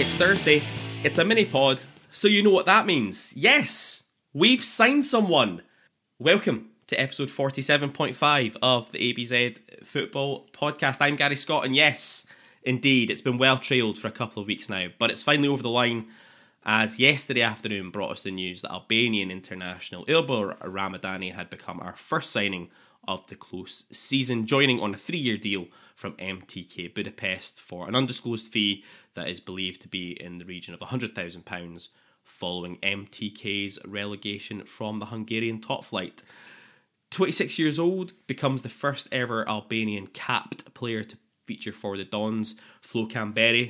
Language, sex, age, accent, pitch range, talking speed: English, male, 20-39, British, 100-135 Hz, 155 wpm